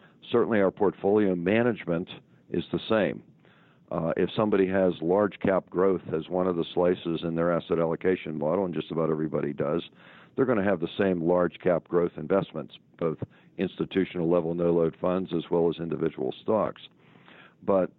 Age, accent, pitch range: 50-69, American, 85-95 Hz